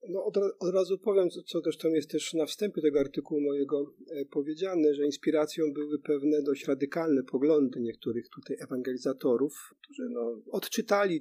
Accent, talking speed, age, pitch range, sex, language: native, 150 wpm, 40-59, 135-165 Hz, male, Polish